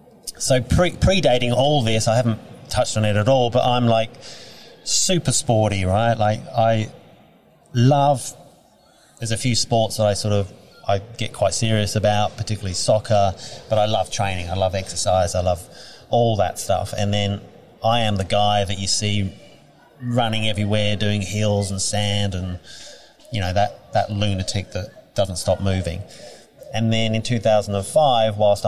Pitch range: 95-115 Hz